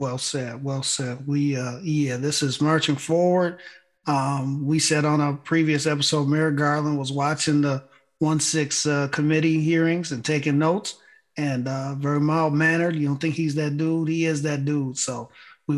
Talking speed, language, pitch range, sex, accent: 185 wpm, English, 135-160 Hz, male, American